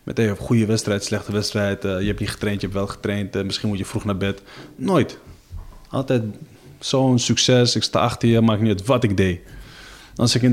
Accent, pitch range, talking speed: Dutch, 105-130 Hz, 230 wpm